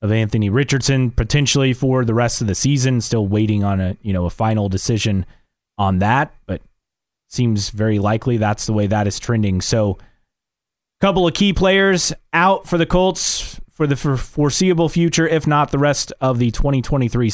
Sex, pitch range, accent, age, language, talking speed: male, 110-145 Hz, American, 30-49, English, 180 wpm